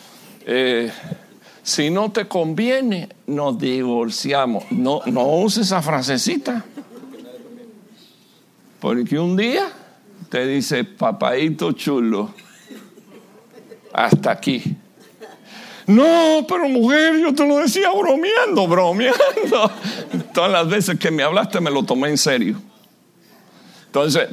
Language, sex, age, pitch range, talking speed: English, male, 60-79, 155-245 Hz, 105 wpm